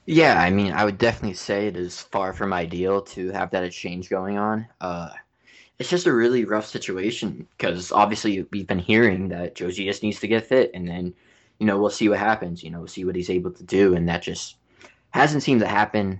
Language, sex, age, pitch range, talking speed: English, male, 20-39, 95-110 Hz, 225 wpm